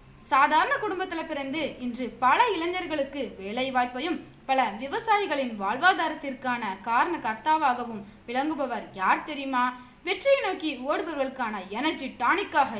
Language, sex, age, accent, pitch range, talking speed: Tamil, female, 20-39, native, 245-310 Hz, 95 wpm